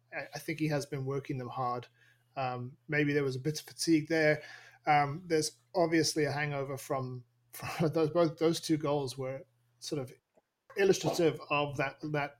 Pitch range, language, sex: 130-155 Hz, English, male